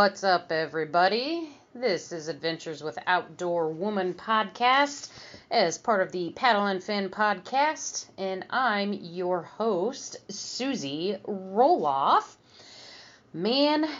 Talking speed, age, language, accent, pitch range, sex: 105 wpm, 30-49, English, American, 155-205 Hz, female